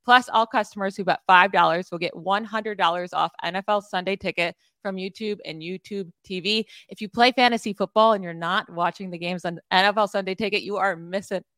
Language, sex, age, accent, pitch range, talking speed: English, female, 30-49, American, 175-215 Hz, 185 wpm